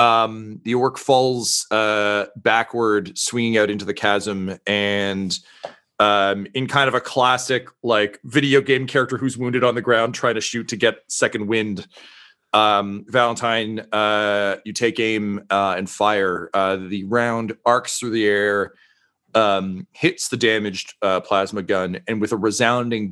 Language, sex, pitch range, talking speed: English, male, 95-115 Hz, 160 wpm